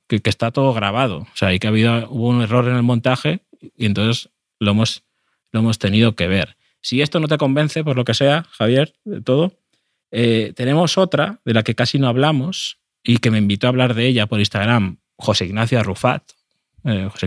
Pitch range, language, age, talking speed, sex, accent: 110-135 Hz, Spanish, 20-39, 205 wpm, male, Spanish